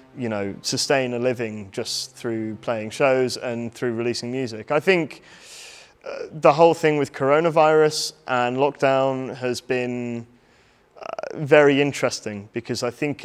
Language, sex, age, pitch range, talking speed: Slovak, male, 20-39, 110-130 Hz, 140 wpm